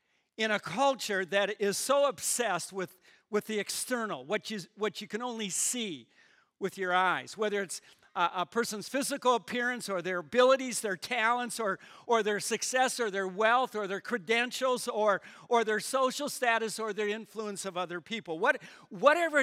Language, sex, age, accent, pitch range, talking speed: English, male, 50-69, American, 190-245 Hz, 175 wpm